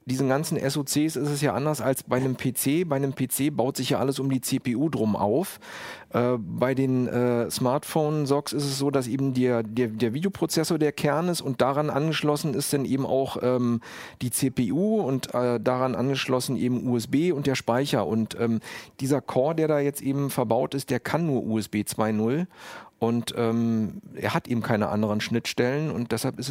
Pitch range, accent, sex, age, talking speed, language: 120-145 Hz, German, male, 40-59, 190 wpm, German